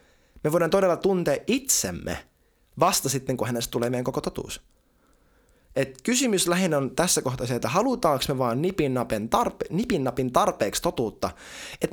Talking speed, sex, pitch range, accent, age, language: 150 wpm, male, 110-150 Hz, native, 20-39, Finnish